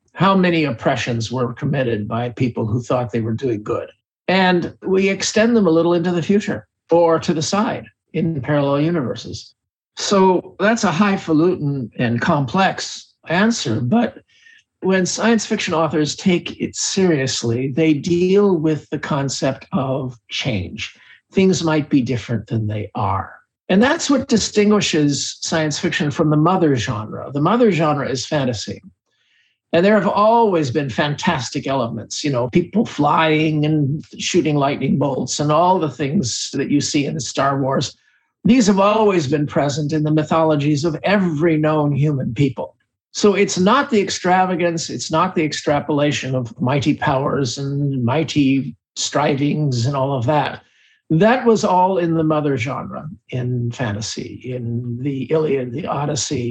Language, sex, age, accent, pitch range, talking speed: English, male, 50-69, American, 135-180 Hz, 155 wpm